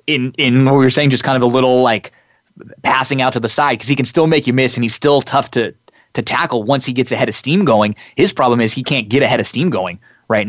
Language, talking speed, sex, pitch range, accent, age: English, 280 wpm, male, 105-130 Hz, American, 20-39